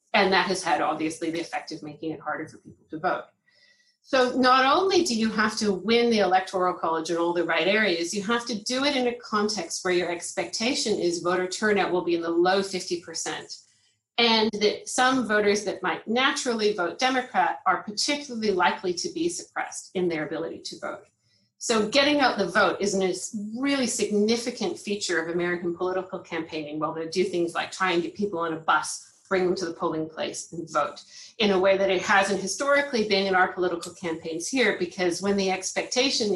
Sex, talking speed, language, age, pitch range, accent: female, 200 wpm, English, 40-59, 175-235 Hz, American